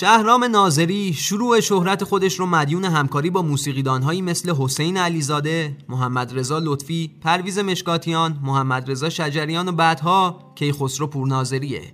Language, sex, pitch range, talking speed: Persian, male, 135-170 Hz, 135 wpm